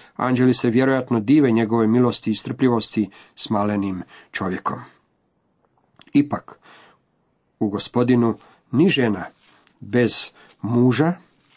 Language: Croatian